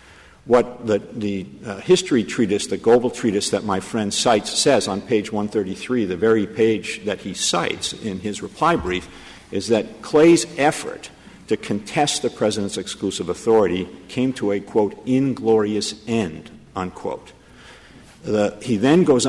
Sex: male